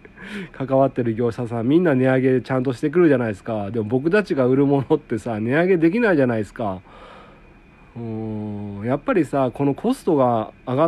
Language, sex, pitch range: Japanese, male, 110-170 Hz